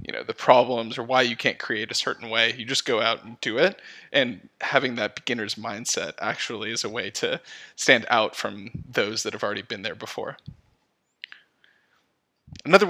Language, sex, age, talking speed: English, male, 20-39, 180 wpm